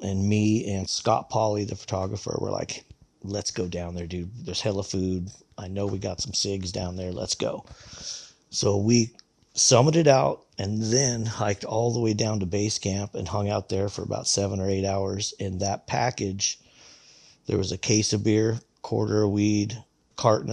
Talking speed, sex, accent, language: 185 wpm, male, American, English